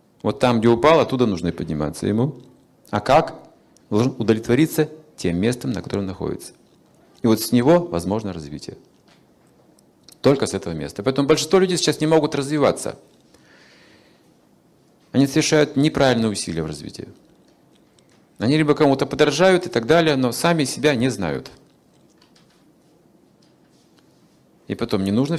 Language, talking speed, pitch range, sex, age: Russian, 135 wpm, 105-150 Hz, male, 40-59